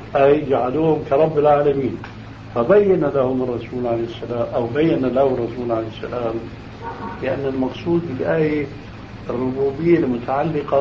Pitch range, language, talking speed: 115-150 Hz, Arabic, 115 wpm